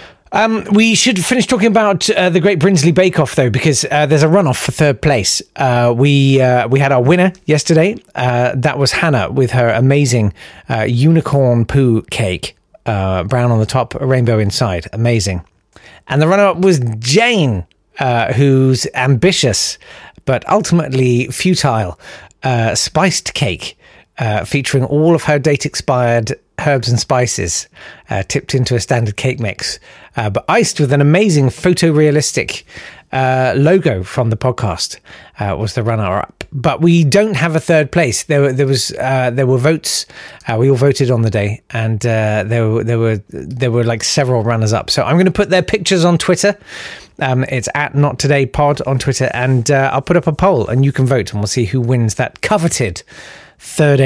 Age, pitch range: 40-59, 115-155 Hz